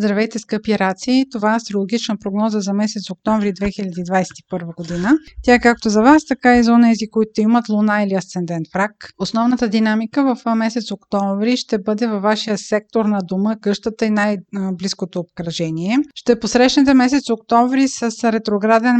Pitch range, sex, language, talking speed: 200-235 Hz, female, Bulgarian, 155 wpm